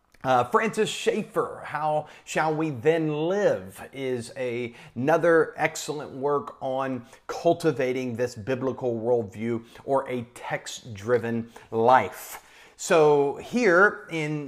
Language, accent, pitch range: English, American, 135-185 Hz